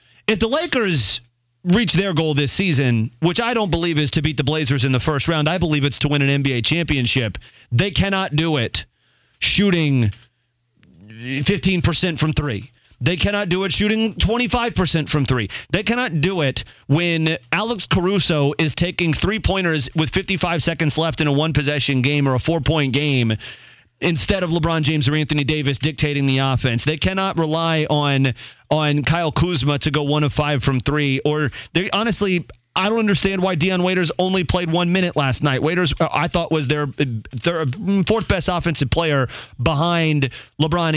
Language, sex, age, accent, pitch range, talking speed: English, male, 30-49, American, 140-175 Hz, 175 wpm